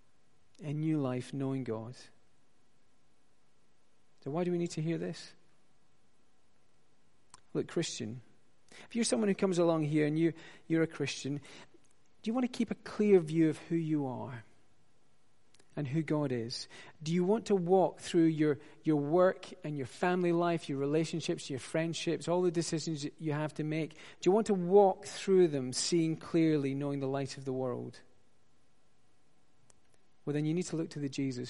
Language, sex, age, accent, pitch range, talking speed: English, male, 40-59, British, 135-180 Hz, 175 wpm